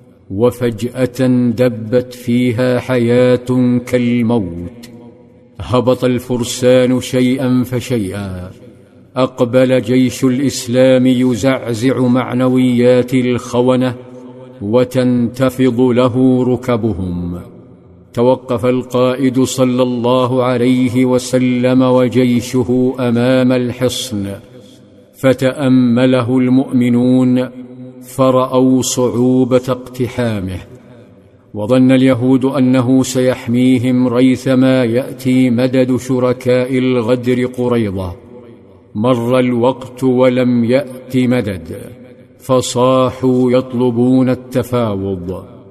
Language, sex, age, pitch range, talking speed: Arabic, male, 50-69, 125-130 Hz, 65 wpm